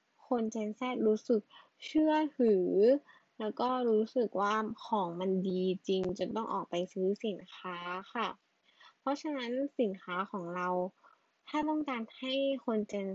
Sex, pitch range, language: female, 195-250 Hz, Thai